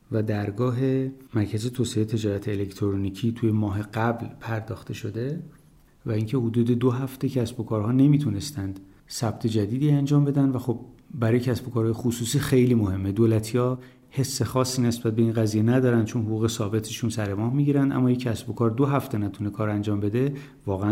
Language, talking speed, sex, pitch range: Persian, 165 wpm, male, 115-145 Hz